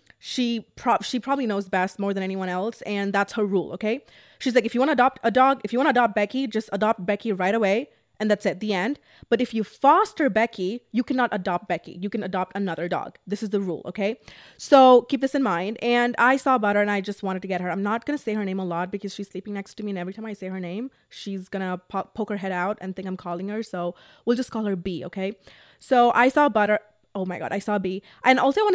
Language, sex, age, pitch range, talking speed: English, female, 20-39, 195-230 Hz, 265 wpm